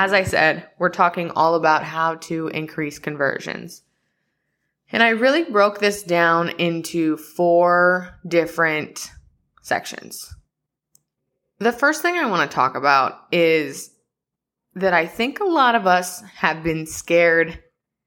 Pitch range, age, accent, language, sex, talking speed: 165-205 Hz, 20-39, American, English, female, 135 wpm